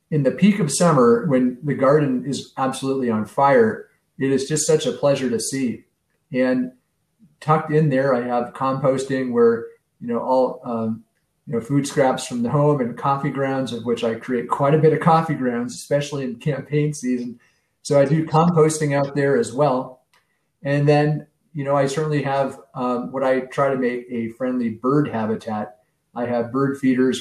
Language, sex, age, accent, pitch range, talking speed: English, male, 40-59, American, 120-150 Hz, 185 wpm